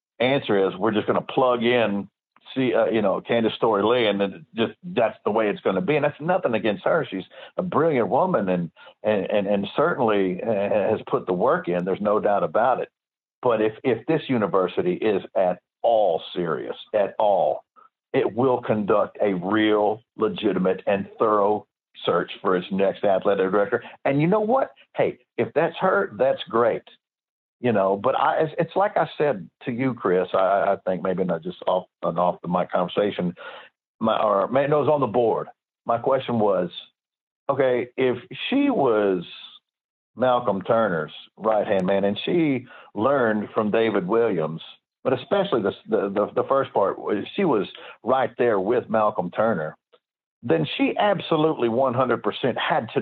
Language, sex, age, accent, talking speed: English, male, 60-79, American, 170 wpm